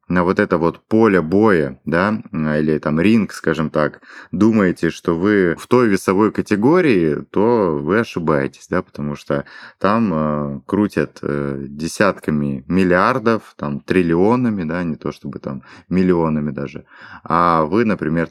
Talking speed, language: 140 wpm, Russian